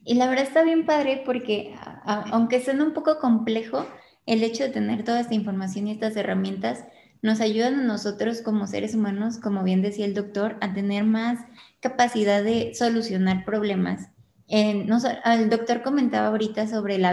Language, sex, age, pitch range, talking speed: Spanish, female, 20-39, 195-230 Hz, 165 wpm